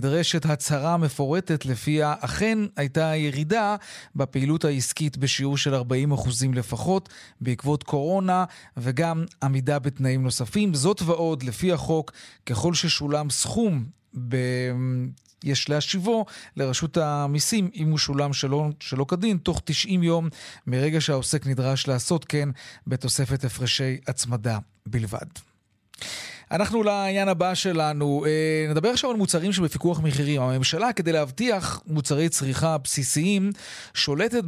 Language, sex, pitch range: Hebrew, male, 140-180 Hz